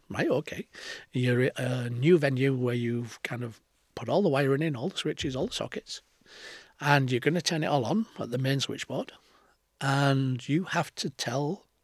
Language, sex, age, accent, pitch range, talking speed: English, male, 40-59, British, 130-160 Hz, 200 wpm